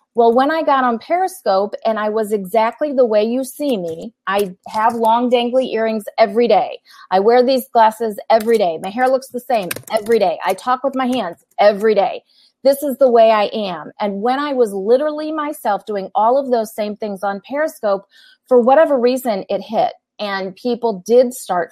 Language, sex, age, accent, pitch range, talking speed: English, female, 30-49, American, 205-255 Hz, 195 wpm